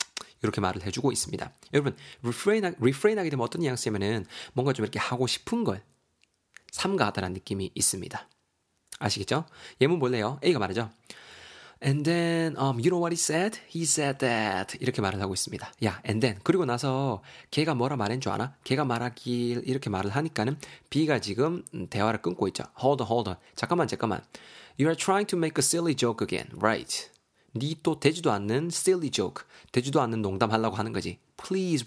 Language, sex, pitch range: Korean, male, 105-155 Hz